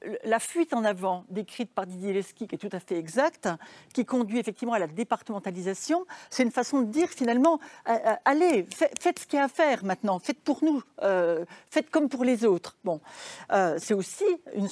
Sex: female